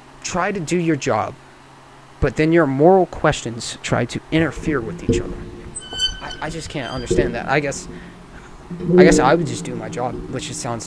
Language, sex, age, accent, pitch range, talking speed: English, male, 30-49, American, 120-155 Hz, 195 wpm